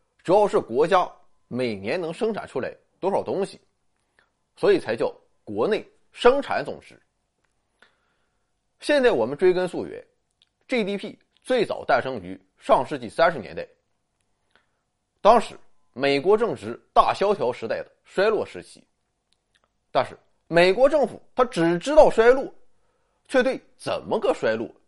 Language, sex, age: Chinese, male, 30-49